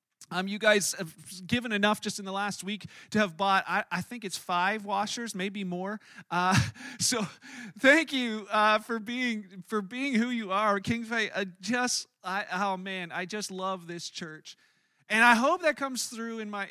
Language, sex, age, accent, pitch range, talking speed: English, male, 40-59, American, 185-220 Hz, 190 wpm